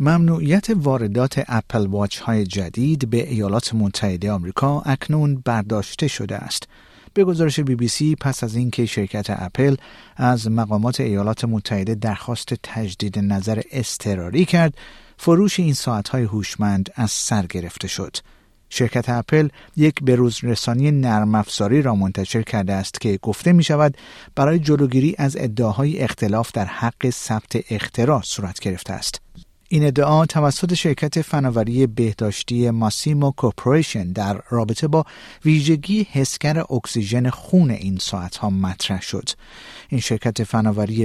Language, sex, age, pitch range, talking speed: Persian, male, 50-69, 105-145 Hz, 135 wpm